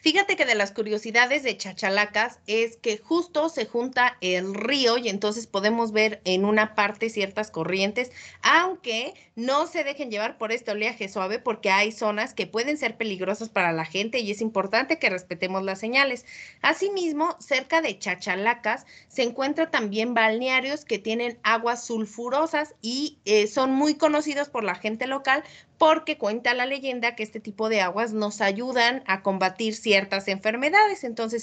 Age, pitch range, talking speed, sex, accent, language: 30-49, 200-250 Hz, 165 wpm, female, Mexican, Spanish